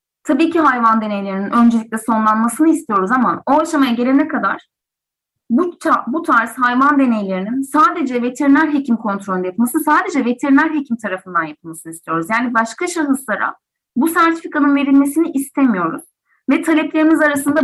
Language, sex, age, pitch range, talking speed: Turkish, female, 30-49, 225-310 Hz, 135 wpm